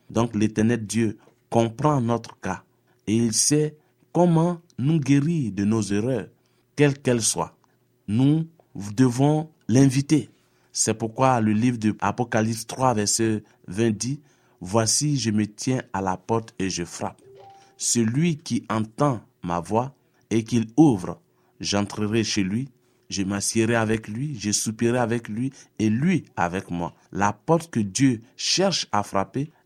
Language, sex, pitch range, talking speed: French, male, 105-135 Hz, 145 wpm